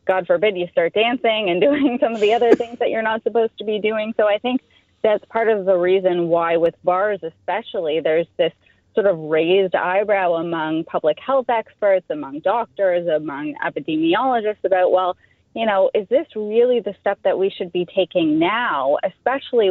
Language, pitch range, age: English, 175-225 Hz, 30-49